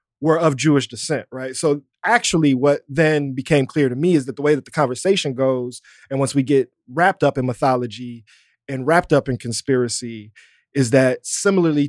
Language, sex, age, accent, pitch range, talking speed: English, male, 20-39, American, 130-155 Hz, 185 wpm